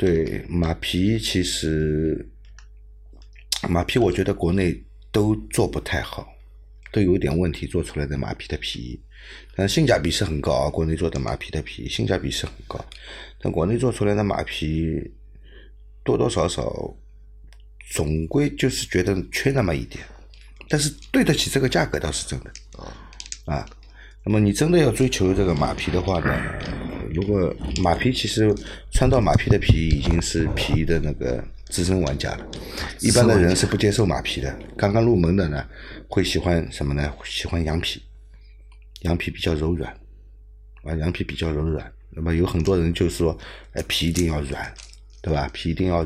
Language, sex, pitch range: Chinese, male, 80-105 Hz